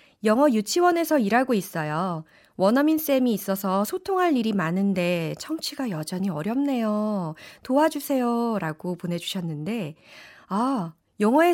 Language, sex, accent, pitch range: Korean, female, native, 190-295 Hz